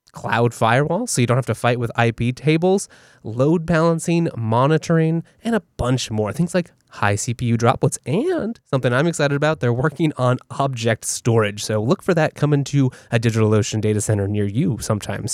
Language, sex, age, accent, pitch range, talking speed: English, male, 20-39, American, 110-145 Hz, 180 wpm